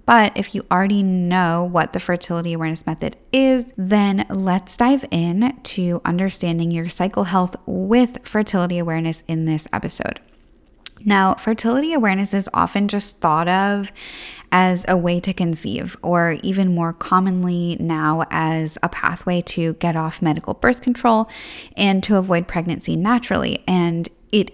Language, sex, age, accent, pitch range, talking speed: English, female, 10-29, American, 170-220 Hz, 145 wpm